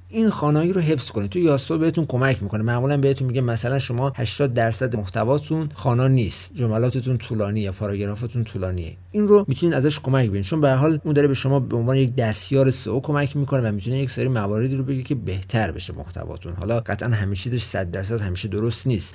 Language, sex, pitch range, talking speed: Persian, male, 105-135 Hz, 195 wpm